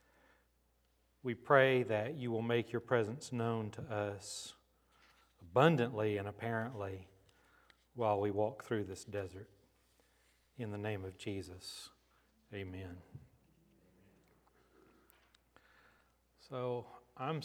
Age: 40-59